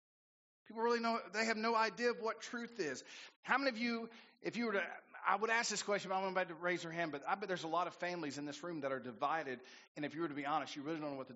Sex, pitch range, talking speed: male, 150-205 Hz, 305 wpm